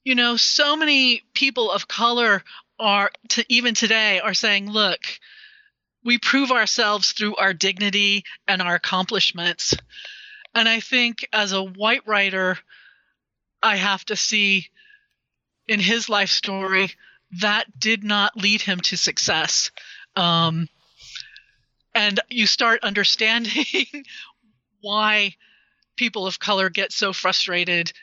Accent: American